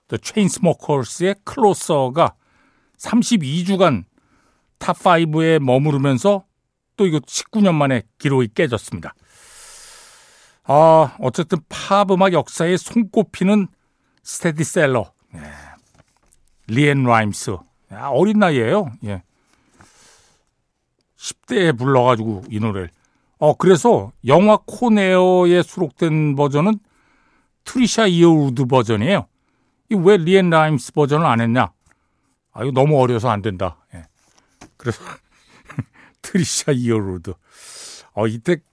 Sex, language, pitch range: male, Korean, 125-195 Hz